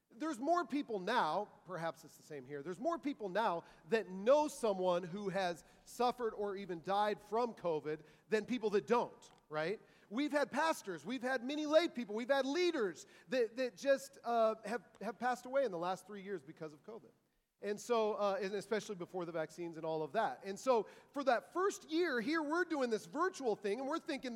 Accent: American